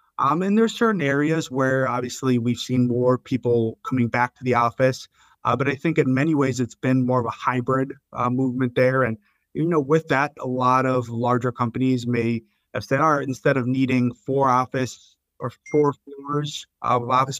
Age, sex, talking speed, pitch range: 30-49, male, 200 wpm, 120-145 Hz